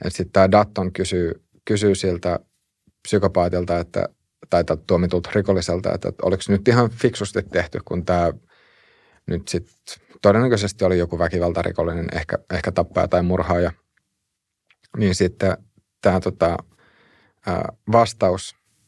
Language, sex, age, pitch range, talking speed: Finnish, male, 30-49, 90-100 Hz, 115 wpm